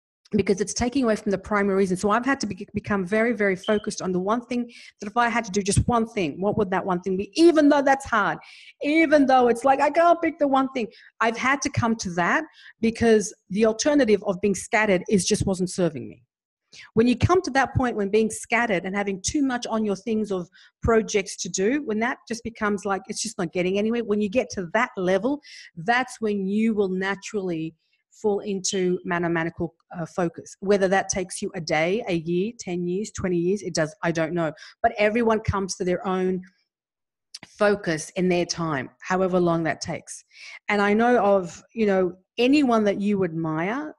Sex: female